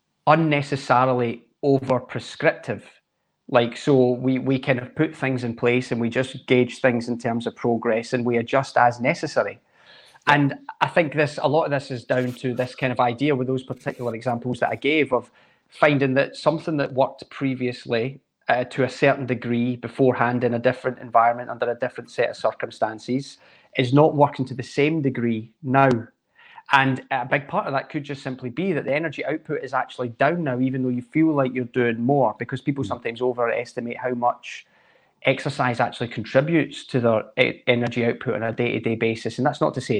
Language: English